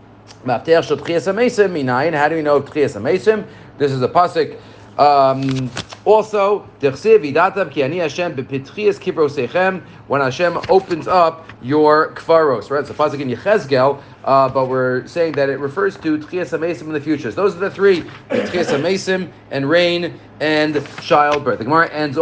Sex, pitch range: male, 135-180 Hz